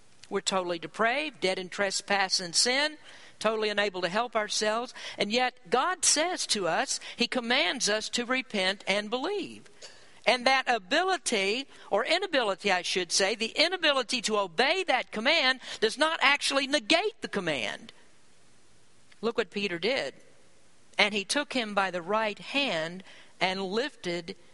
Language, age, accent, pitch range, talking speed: English, 50-69, American, 185-255 Hz, 145 wpm